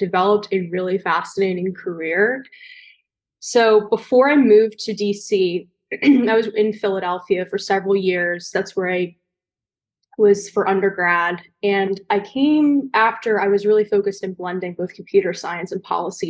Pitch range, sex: 195-225 Hz, female